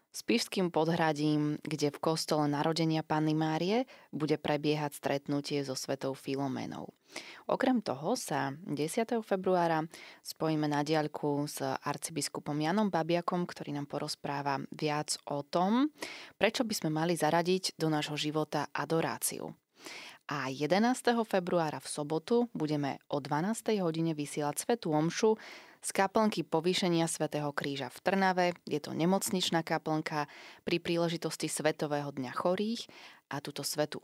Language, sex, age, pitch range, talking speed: Slovak, female, 20-39, 150-180 Hz, 130 wpm